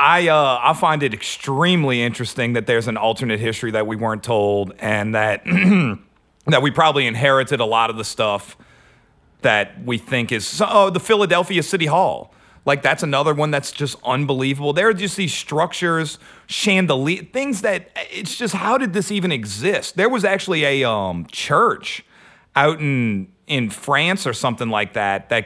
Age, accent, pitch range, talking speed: 40-59, American, 115-175 Hz, 170 wpm